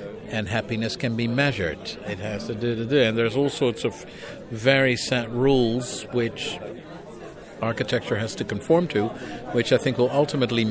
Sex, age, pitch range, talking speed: male, 60-79, 115-135 Hz, 170 wpm